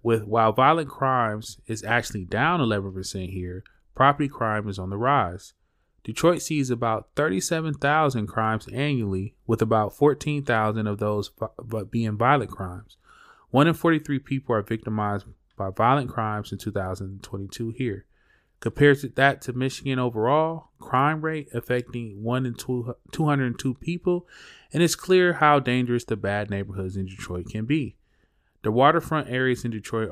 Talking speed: 140 wpm